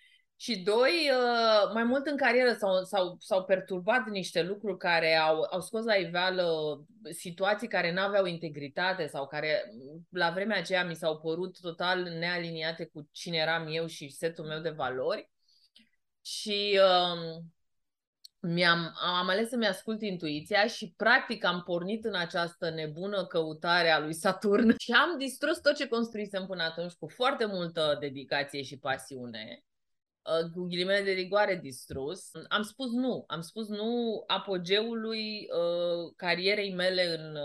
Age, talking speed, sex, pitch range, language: 30-49, 140 wpm, female, 165-220 Hz, Romanian